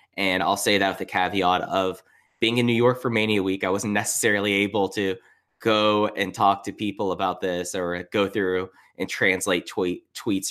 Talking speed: 195 wpm